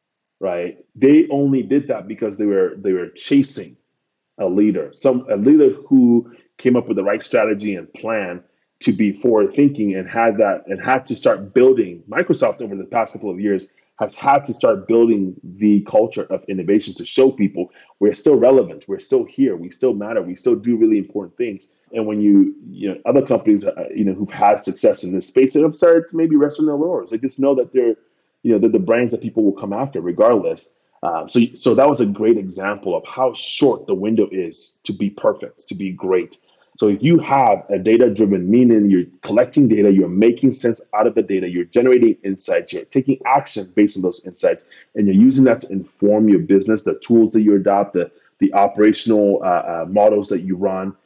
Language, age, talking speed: English, 30-49, 210 wpm